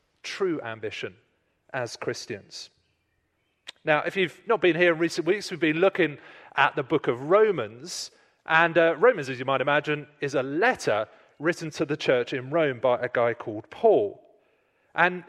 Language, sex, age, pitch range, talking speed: English, male, 30-49, 135-180 Hz, 170 wpm